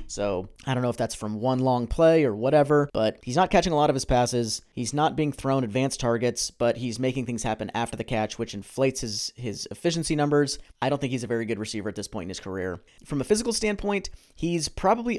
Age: 30-49